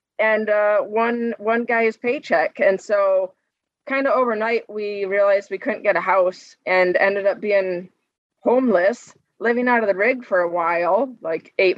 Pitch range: 180-220 Hz